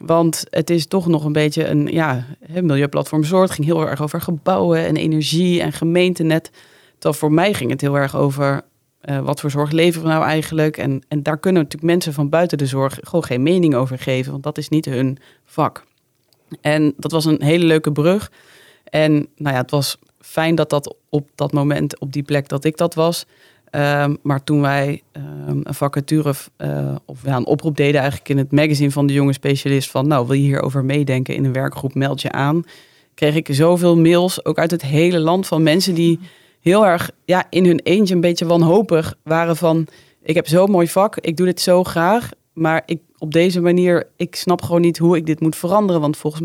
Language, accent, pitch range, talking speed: Dutch, Dutch, 145-170 Hz, 205 wpm